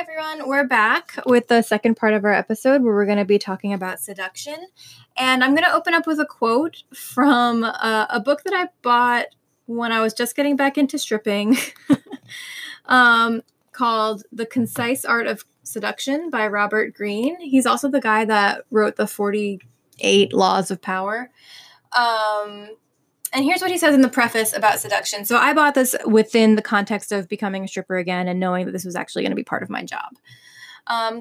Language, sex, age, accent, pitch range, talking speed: English, female, 10-29, American, 205-255 Hz, 190 wpm